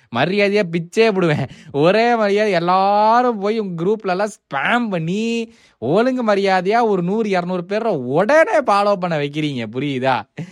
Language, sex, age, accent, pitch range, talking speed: Tamil, male, 20-39, native, 125-185 Hz, 125 wpm